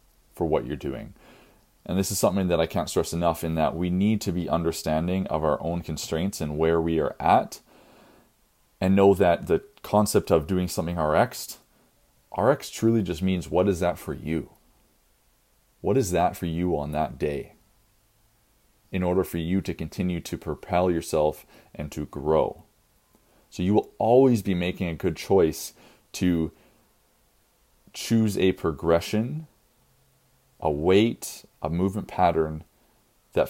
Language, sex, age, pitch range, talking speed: English, male, 30-49, 80-100 Hz, 155 wpm